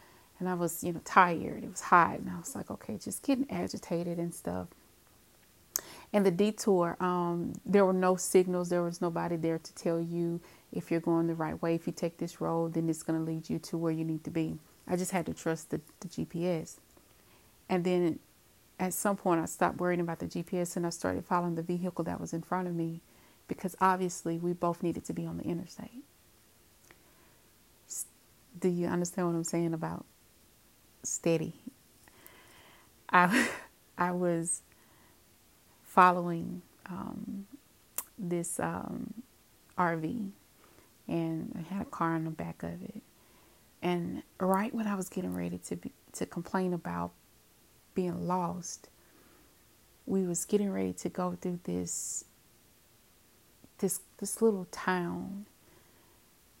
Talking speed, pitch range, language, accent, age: 160 wpm, 165-185 Hz, English, American, 30-49